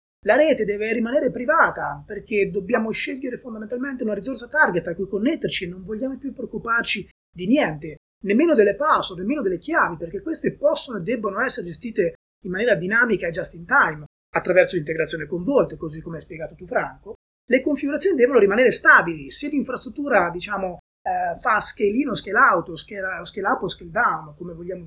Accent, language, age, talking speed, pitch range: native, Italian, 30-49, 180 wpm, 185-275 Hz